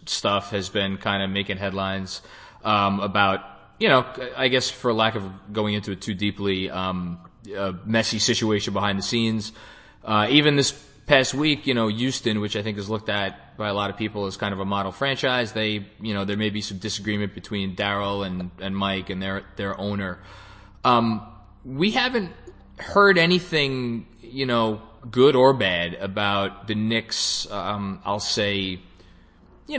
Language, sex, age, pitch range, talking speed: English, male, 20-39, 100-125 Hz, 175 wpm